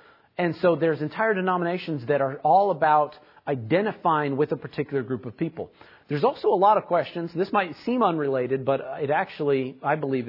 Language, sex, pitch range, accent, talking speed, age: English, male, 140-185 Hz, American, 180 wpm, 40-59